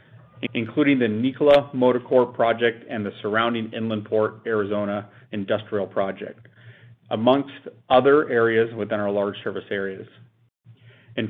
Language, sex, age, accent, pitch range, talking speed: English, male, 30-49, American, 110-130 Hz, 115 wpm